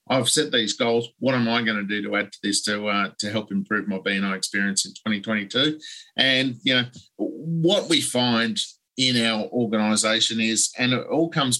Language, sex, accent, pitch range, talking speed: English, male, Australian, 105-130 Hz, 195 wpm